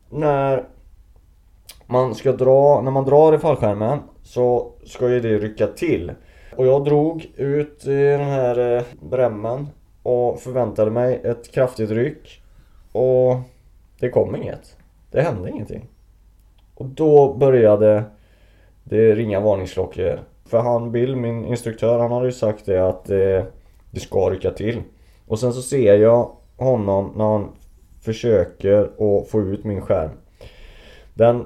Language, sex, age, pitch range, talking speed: Swedish, male, 20-39, 100-125 Hz, 135 wpm